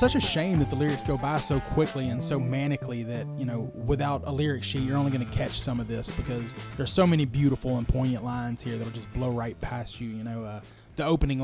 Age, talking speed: 20-39, 245 wpm